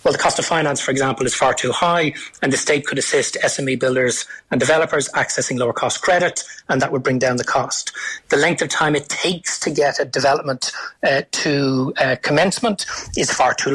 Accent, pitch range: Irish, 135-155 Hz